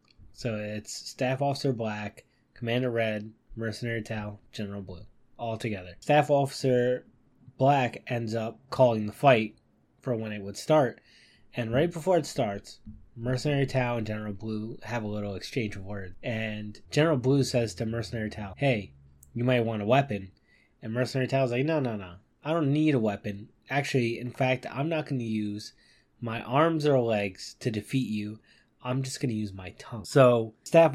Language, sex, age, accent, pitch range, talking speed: English, male, 20-39, American, 110-130 Hz, 175 wpm